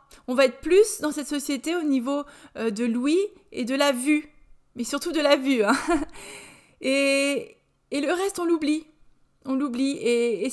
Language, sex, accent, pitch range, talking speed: French, female, French, 235-290 Hz, 175 wpm